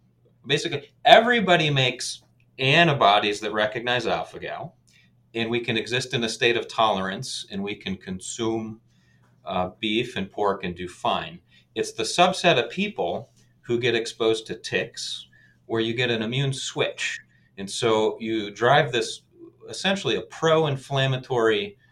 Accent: American